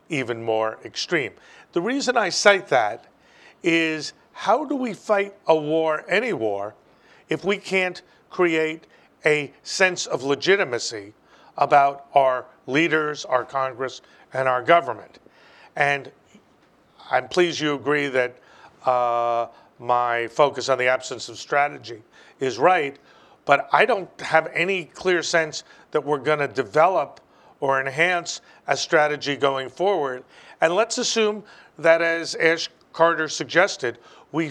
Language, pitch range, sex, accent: English, 140-180 Hz, male, American